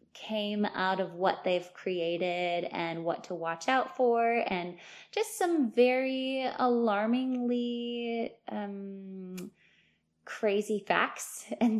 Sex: female